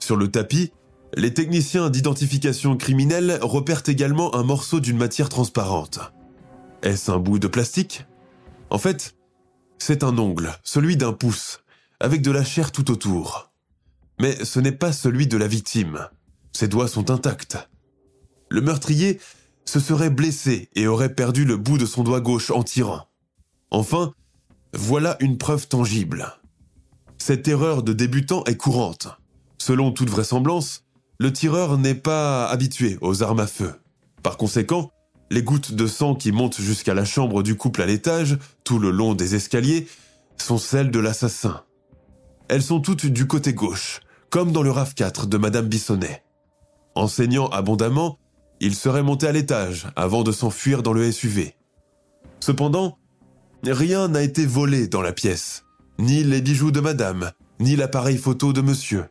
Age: 20-39